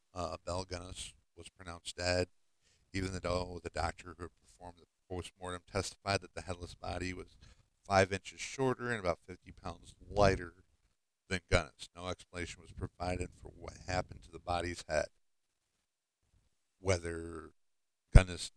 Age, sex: 50-69, male